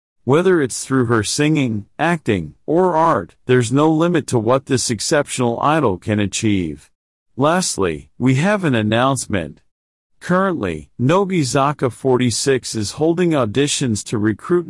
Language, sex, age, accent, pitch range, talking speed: English, male, 40-59, American, 110-150 Hz, 125 wpm